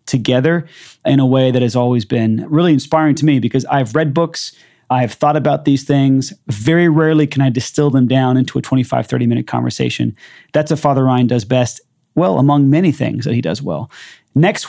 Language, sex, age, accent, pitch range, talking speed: English, male, 30-49, American, 130-155 Hz, 195 wpm